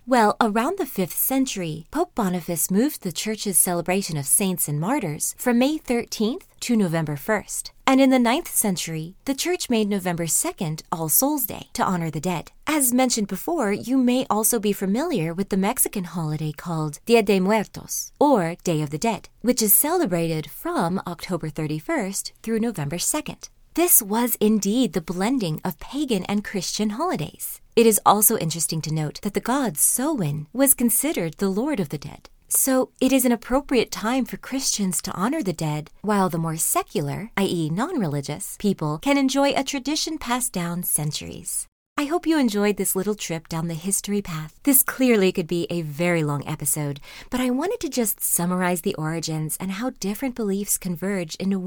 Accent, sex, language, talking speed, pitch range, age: American, female, English, 180 wpm, 170-245 Hz, 30-49